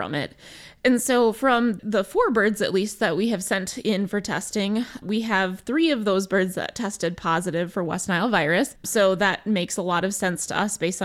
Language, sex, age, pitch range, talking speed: English, female, 20-39, 185-235 Hz, 215 wpm